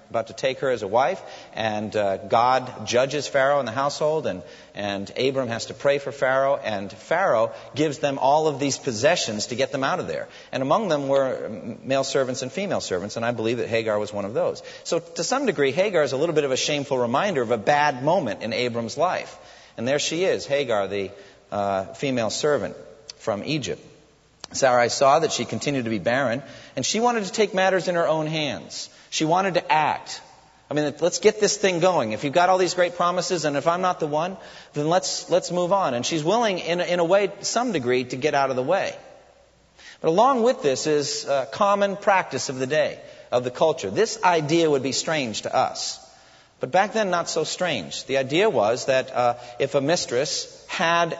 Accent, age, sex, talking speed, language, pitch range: American, 40-59, male, 220 wpm, English, 130-180 Hz